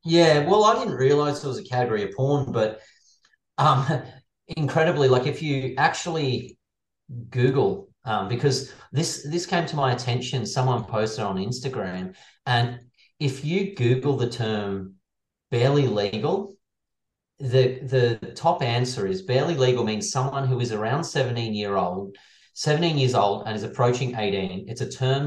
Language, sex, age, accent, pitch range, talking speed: English, male, 30-49, Australian, 110-140 Hz, 150 wpm